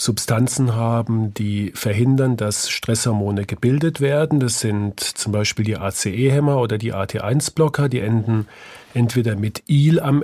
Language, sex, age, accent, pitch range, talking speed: German, male, 40-59, German, 110-135 Hz, 135 wpm